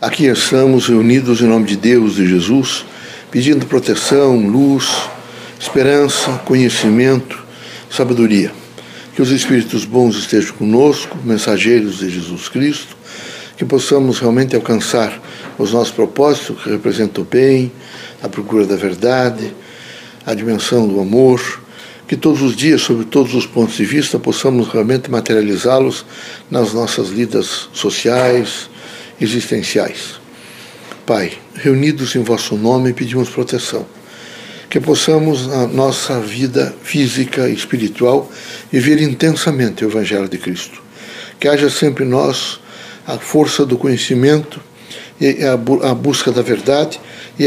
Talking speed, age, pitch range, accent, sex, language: 125 wpm, 60-79, 115-140 Hz, Brazilian, male, Portuguese